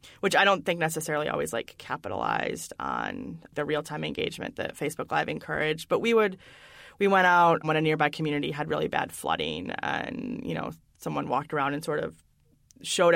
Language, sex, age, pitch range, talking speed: English, female, 20-39, 150-165 Hz, 180 wpm